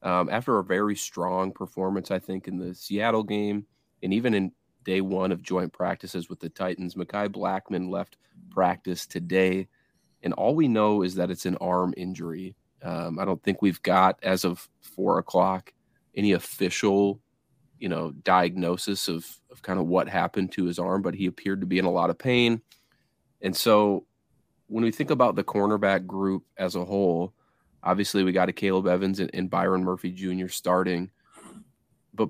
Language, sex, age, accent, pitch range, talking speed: English, male, 30-49, American, 90-100 Hz, 180 wpm